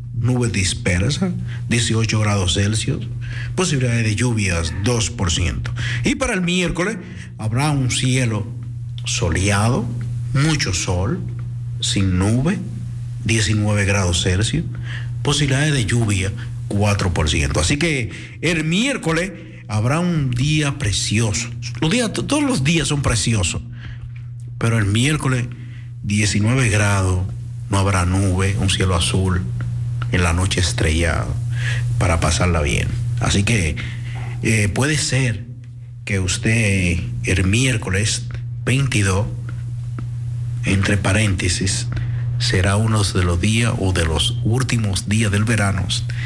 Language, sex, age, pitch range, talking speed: Dutch, male, 60-79, 105-120 Hz, 110 wpm